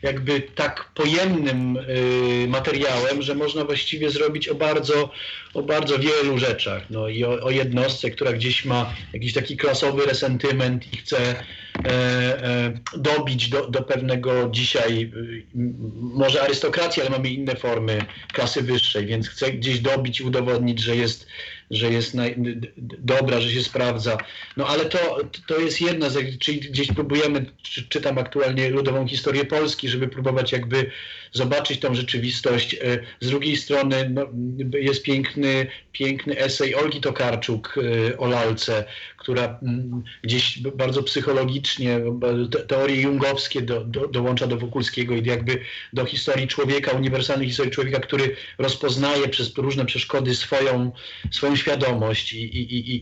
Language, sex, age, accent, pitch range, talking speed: Polish, male, 40-59, native, 120-140 Hz, 130 wpm